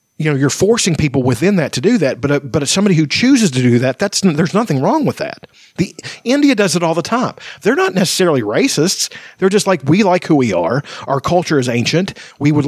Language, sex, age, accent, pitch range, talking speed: English, male, 40-59, American, 140-205 Hz, 245 wpm